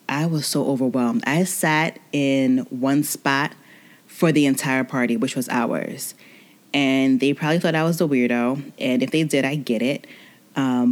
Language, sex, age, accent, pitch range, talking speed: English, female, 20-39, American, 130-165 Hz, 175 wpm